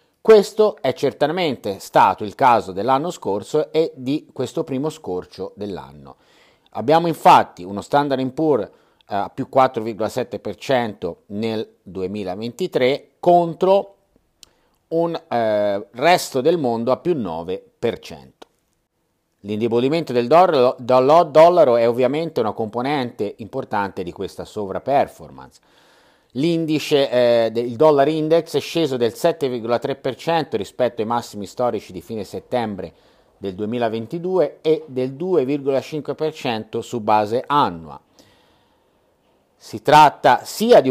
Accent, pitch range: native, 115-155 Hz